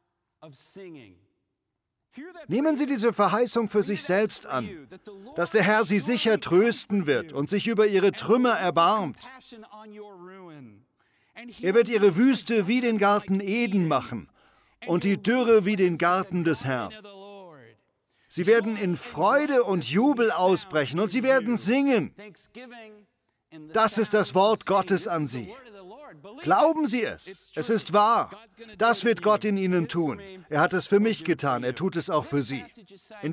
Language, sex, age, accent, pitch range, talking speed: German, male, 50-69, German, 155-225 Hz, 145 wpm